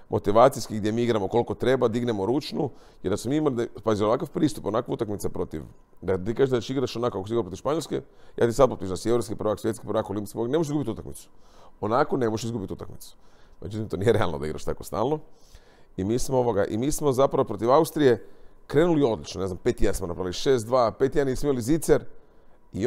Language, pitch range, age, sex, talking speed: Croatian, 105-140 Hz, 40-59, male, 215 wpm